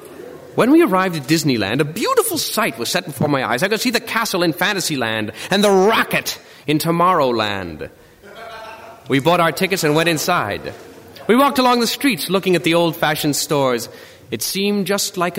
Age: 30-49